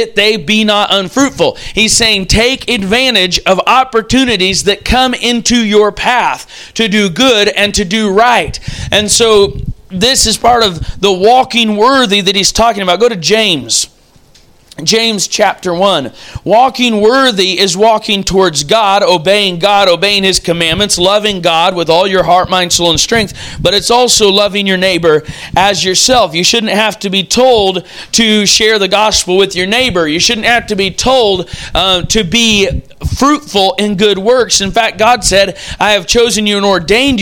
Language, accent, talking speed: English, American, 170 wpm